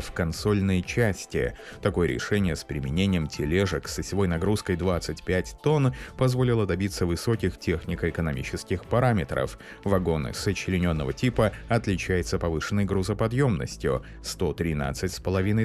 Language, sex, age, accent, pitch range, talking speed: Russian, male, 30-49, native, 85-105 Hz, 90 wpm